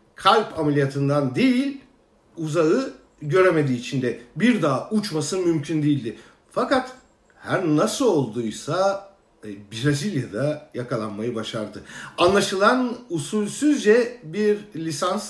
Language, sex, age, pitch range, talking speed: German, male, 50-69, 135-205 Hz, 85 wpm